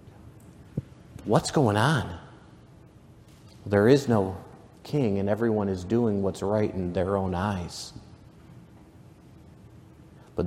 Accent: American